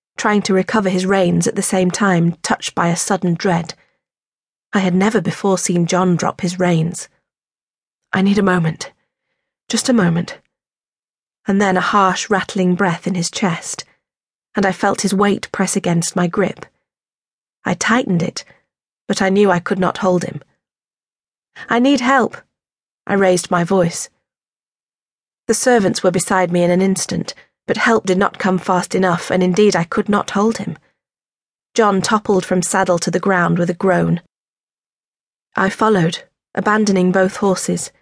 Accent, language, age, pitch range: British, English, 40-59, 180-205 Hz